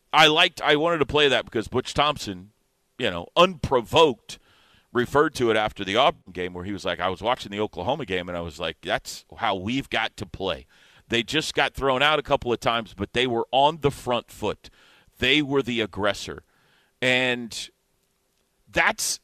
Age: 40-59